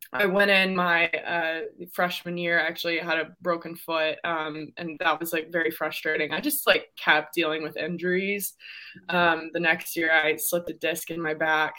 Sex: female